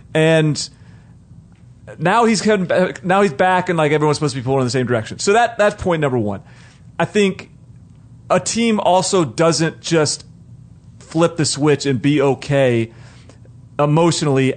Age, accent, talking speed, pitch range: 30-49, American, 155 wpm, 130-170 Hz